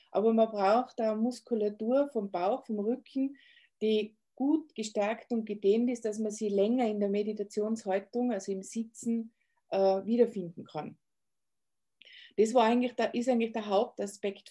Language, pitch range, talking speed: German, 210-245 Hz, 140 wpm